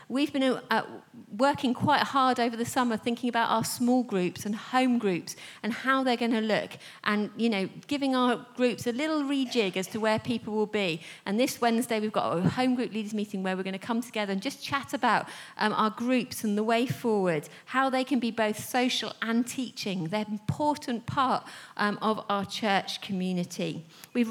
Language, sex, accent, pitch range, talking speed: English, female, British, 215-265 Hz, 205 wpm